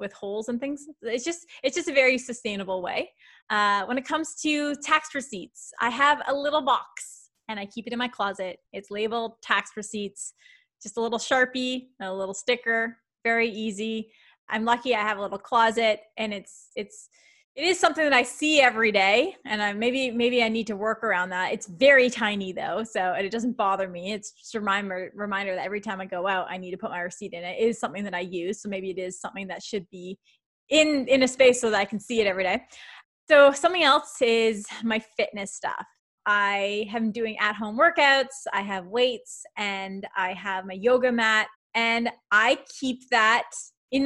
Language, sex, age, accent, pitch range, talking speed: English, female, 20-39, American, 200-255 Hz, 210 wpm